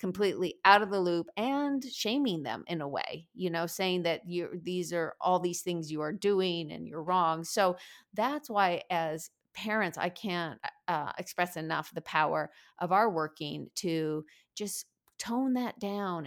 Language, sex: English, female